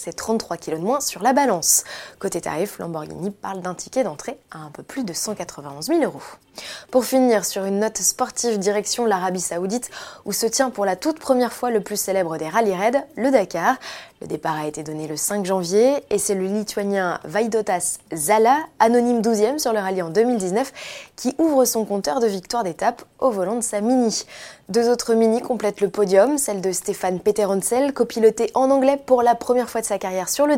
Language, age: French, 20-39